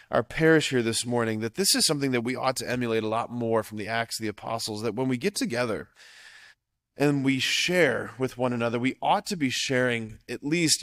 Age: 20-39